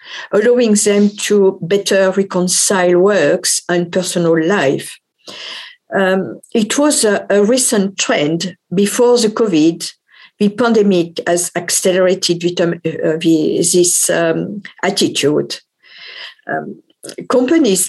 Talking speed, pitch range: 95 wpm, 180-220 Hz